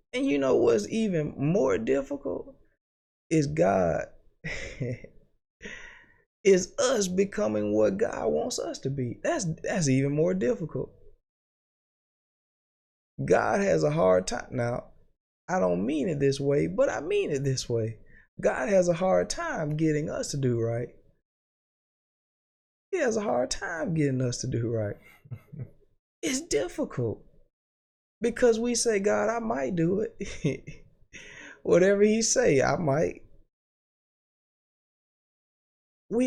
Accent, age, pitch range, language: American, 20-39, 125-205 Hz, English